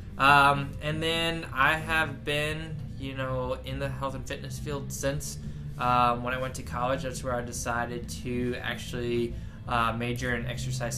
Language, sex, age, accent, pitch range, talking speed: English, male, 20-39, American, 115-125 Hz, 170 wpm